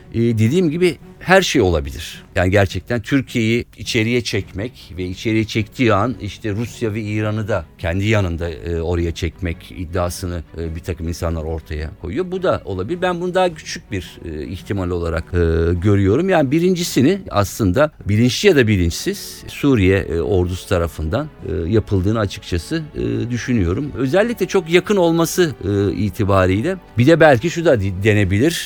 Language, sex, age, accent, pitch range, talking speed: Turkish, male, 50-69, native, 95-125 Hz, 135 wpm